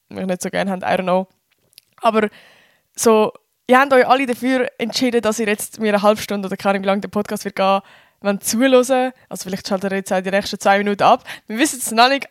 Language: German